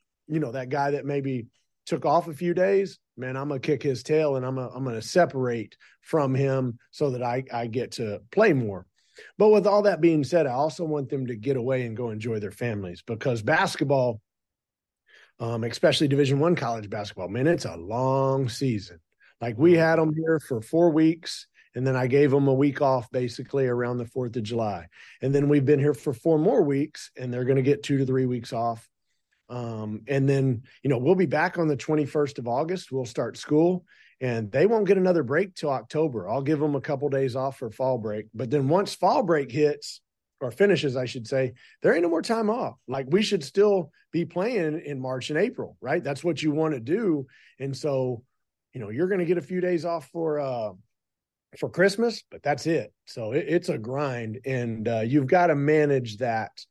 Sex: male